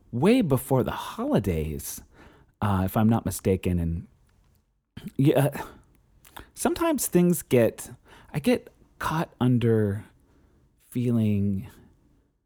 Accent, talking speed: American, 85 wpm